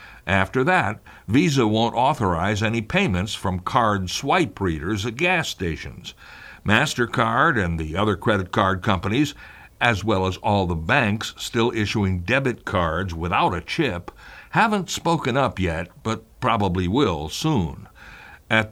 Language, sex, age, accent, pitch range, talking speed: English, male, 60-79, American, 95-140 Hz, 140 wpm